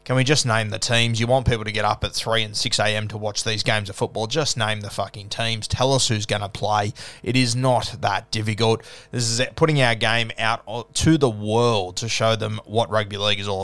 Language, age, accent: English, 20-39, Australian